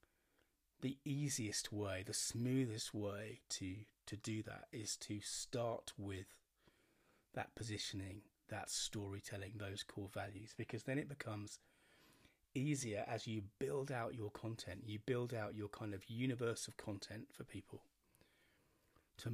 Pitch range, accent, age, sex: 105-125 Hz, British, 30-49, male